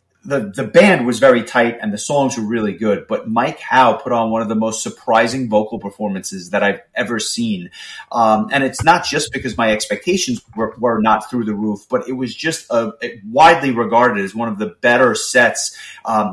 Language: English